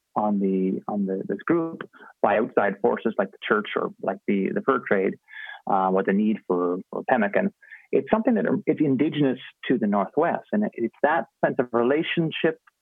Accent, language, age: American, English, 30-49